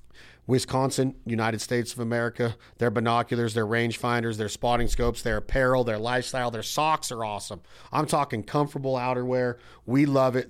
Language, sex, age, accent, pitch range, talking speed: English, male, 40-59, American, 120-130 Hz, 155 wpm